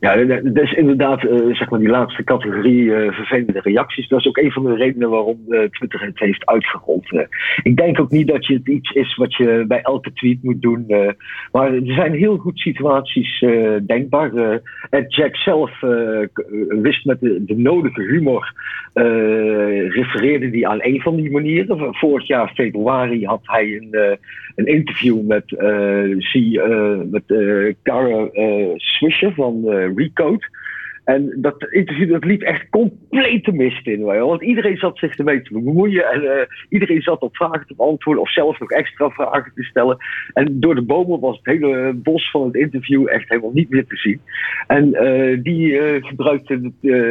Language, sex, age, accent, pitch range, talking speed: Dutch, male, 50-69, Dutch, 115-150 Hz, 185 wpm